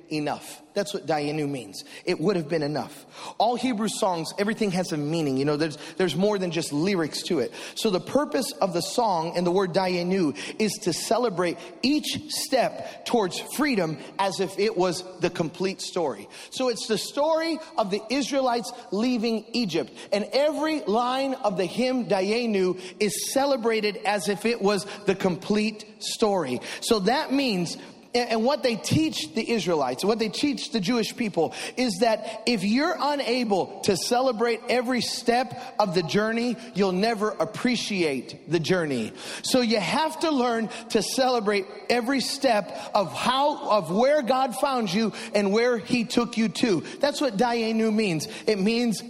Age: 30-49